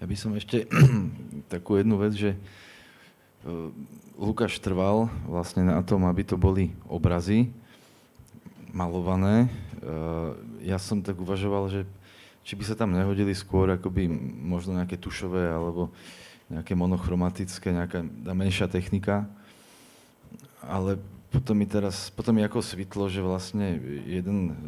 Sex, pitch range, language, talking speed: male, 90-100 Hz, Slovak, 125 wpm